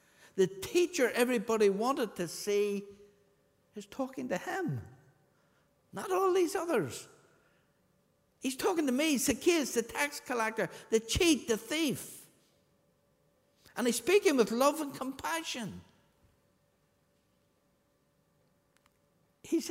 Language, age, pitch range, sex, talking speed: English, 60-79, 215-290 Hz, male, 105 wpm